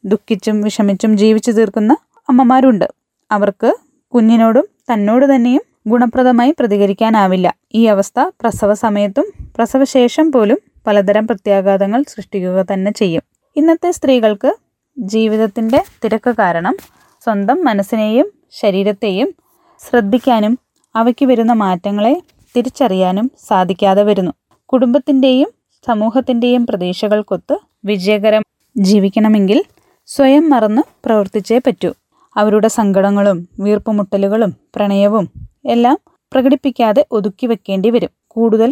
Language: Malayalam